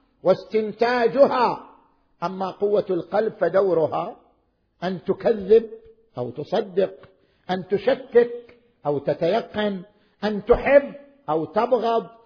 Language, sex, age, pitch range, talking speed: Arabic, male, 50-69, 190-275 Hz, 85 wpm